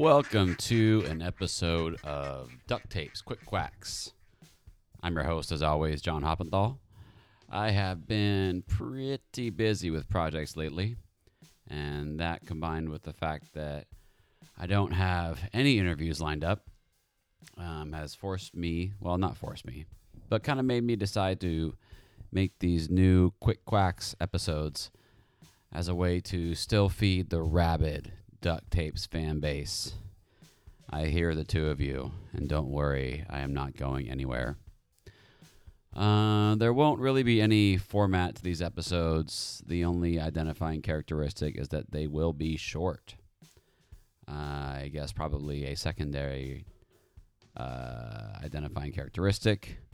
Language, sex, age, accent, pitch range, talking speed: English, male, 30-49, American, 80-100 Hz, 135 wpm